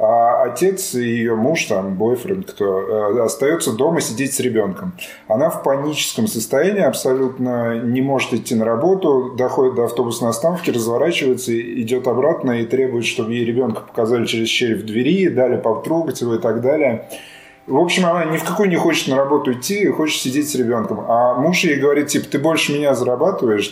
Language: Russian